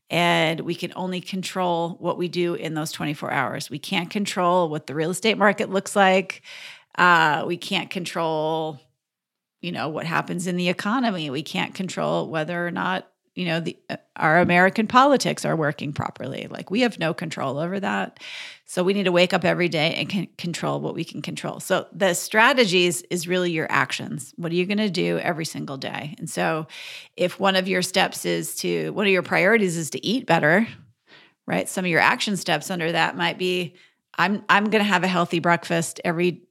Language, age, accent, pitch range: English, 30-49, American, 160-195 Hz